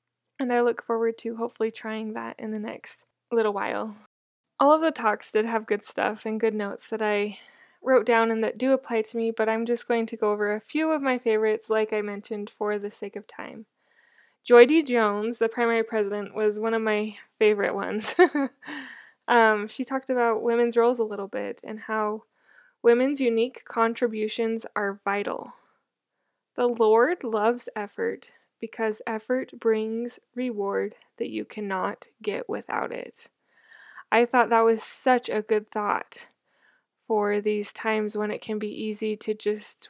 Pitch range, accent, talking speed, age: 215-240 Hz, American, 170 wpm, 10-29